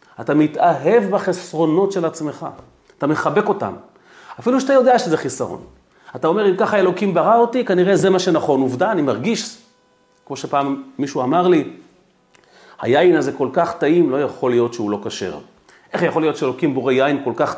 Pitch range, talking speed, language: 135-185 Hz, 175 wpm, Hebrew